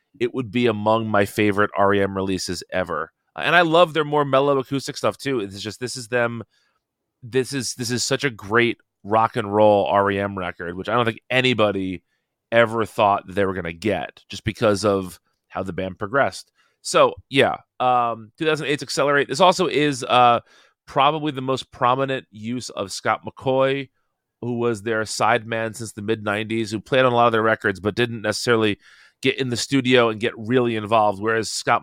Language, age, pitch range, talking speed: English, 30-49, 100-125 Hz, 185 wpm